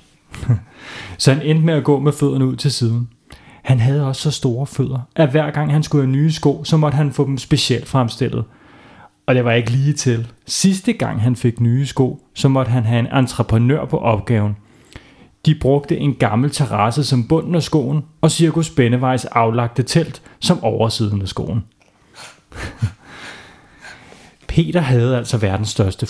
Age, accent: 30-49, native